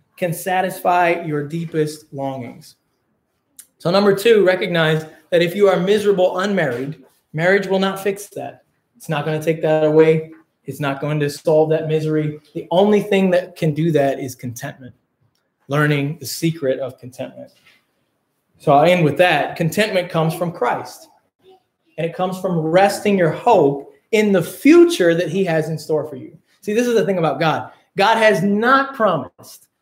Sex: male